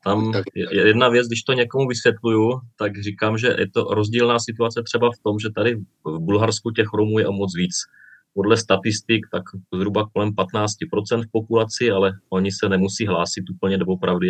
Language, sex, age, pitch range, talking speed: Czech, male, 30-49, 95-110 Hz, 180 wpm